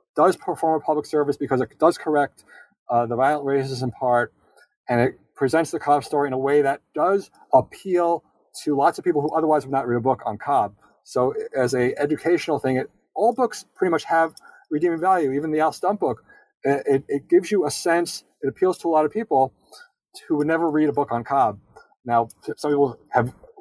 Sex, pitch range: male, 135-170 Hz